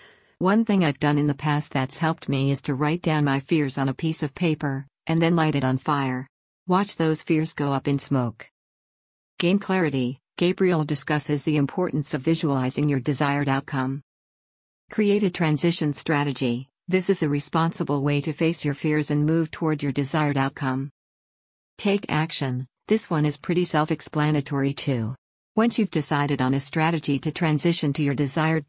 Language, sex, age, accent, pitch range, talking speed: English, female, 50-69, American, 140-165 Hz, 175 wpm